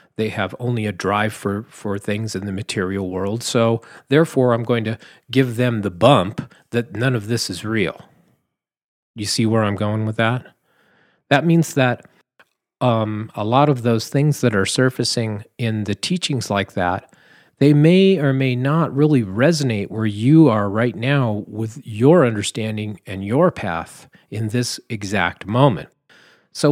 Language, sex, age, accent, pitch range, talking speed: English, male, 40-59, American, 110-140 Hz, 165 wpm